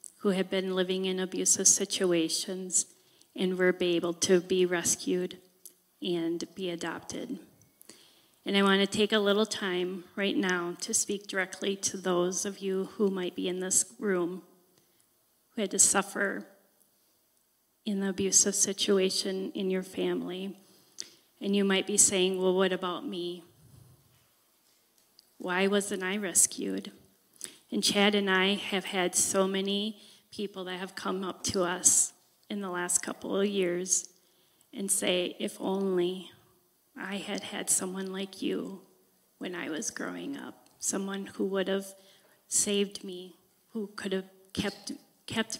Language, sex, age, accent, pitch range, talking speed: English, female, 40-59, American, 180-200 Hz, 145 wpm